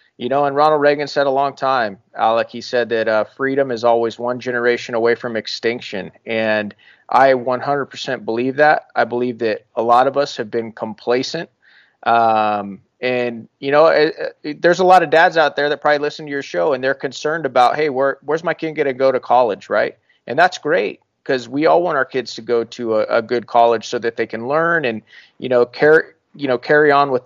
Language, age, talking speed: English, 30-49, 220 wpm